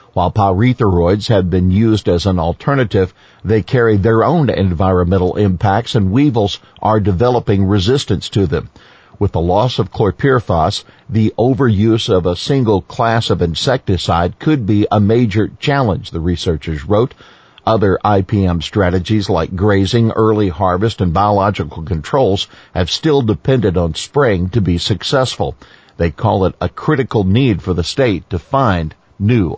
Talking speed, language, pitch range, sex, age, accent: 145 wpm, English, 95-120 Hz, male, 50-69, American